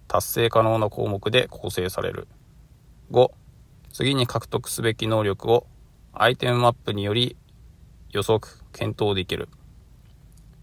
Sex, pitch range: male, 90-115 Hz